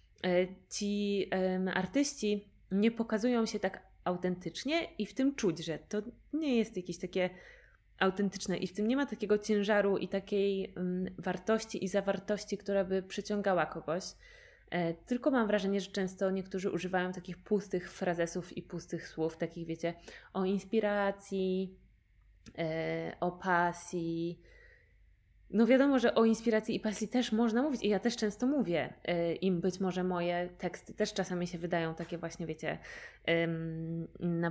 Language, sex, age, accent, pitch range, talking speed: Polish, female, 20-39, native, 170-205 Hz, 140 wpm